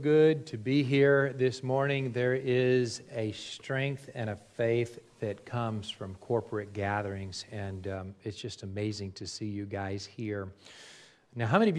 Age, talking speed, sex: 40-59, 165 wpm, male